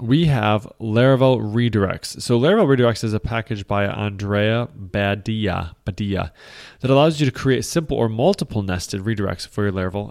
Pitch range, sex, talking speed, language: 100-125 Hz, male, 160 wpm, English